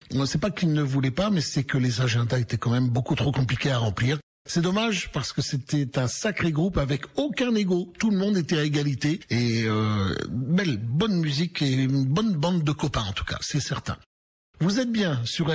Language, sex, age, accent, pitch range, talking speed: French, male, 60-79, French, 120-160 Hz, 215 wpm